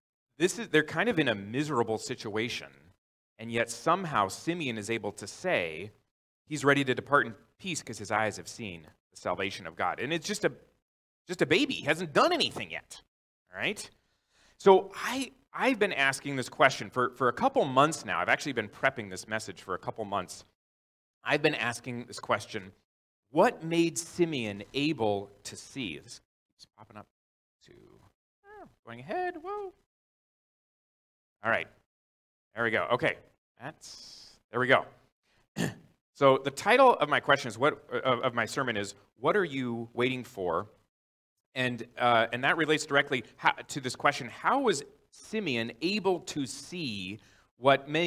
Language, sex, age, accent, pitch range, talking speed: English, male, 30-49, American, 110-155 Hz, 165 wpm